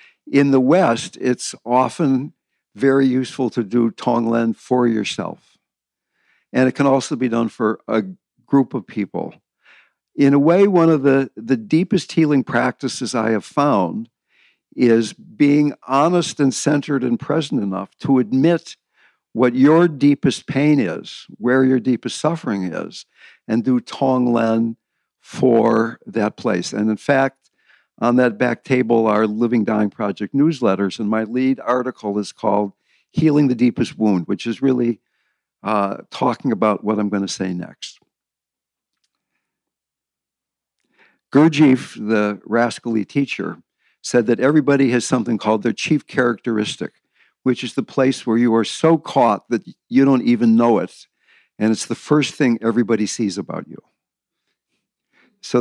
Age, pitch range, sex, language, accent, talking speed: 60-79, 115-135 Hz, male, English, American, 145 wpm